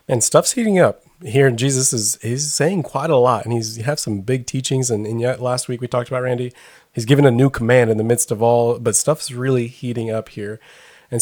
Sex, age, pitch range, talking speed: male, 30-49, 115-140 Hz, 245 wpm